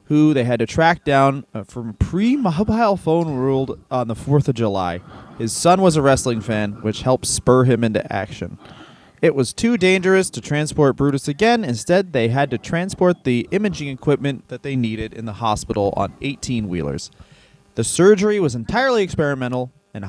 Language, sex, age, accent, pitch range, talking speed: English, male, 20-39, American, 115-165 Hz, 175 wpm